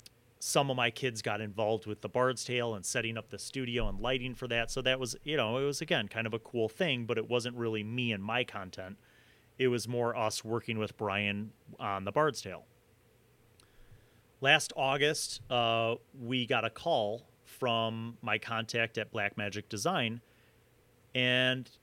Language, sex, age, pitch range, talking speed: English, male, 30-49, 105-125 Hz, 180 wpm